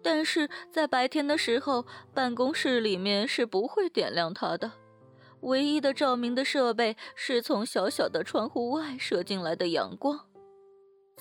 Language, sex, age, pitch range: Chinese, female, 20-39, 225-305 Hz